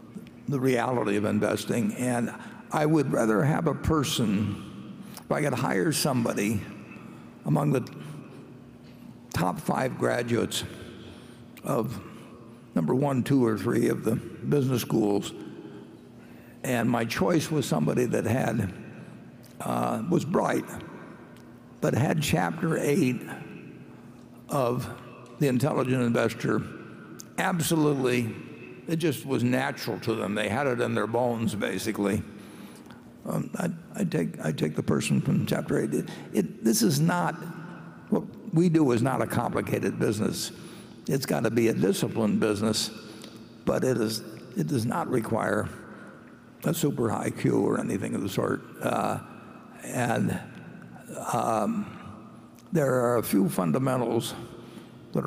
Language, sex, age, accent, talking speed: English, male, 60-79, American, 125 wpm